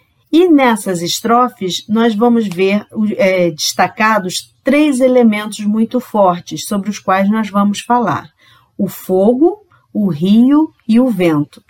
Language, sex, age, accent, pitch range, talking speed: Portuguese, female, 40-59, Brazilian, 195-260 Hz, 125 wpm